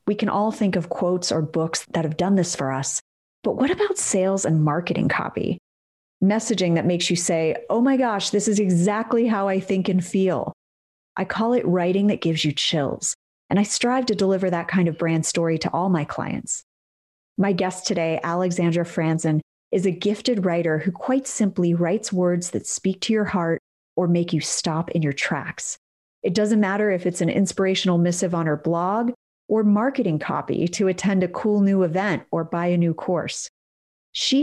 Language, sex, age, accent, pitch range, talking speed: English, female, 30-49, American, 165-205 Hz, 195 wpm